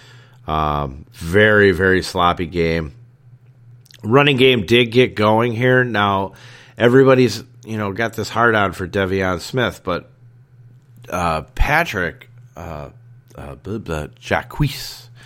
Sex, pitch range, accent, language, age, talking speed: male, 85-125 Hz, American, English, 40-59, 110 wpm